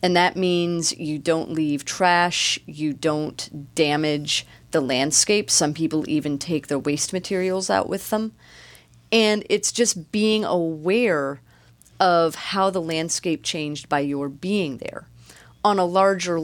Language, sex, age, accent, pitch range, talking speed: English, female, 30-49, American, 145-185 Hz, 140 wpm